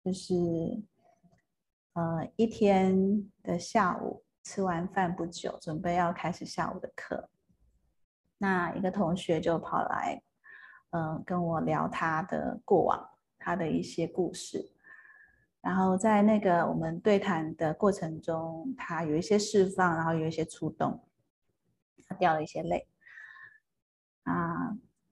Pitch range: 165-200 Hz